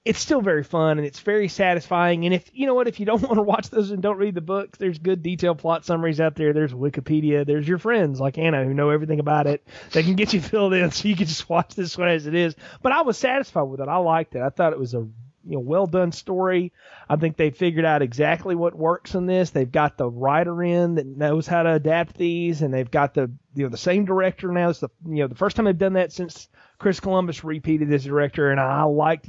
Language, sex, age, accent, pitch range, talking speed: English, male, 30-49, American, 150-190 Hz, 265 wpm